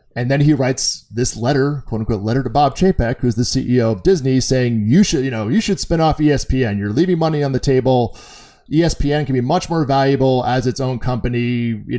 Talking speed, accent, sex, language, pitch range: 220 wpm, American, male, English, 125-175 Hz